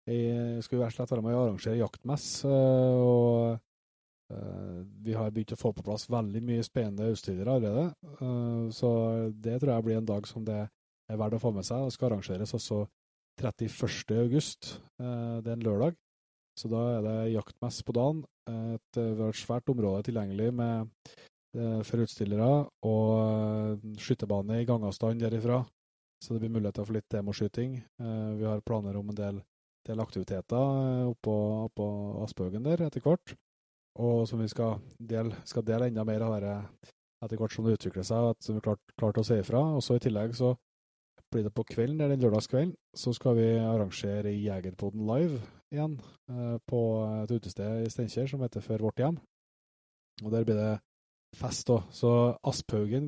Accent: Norwegian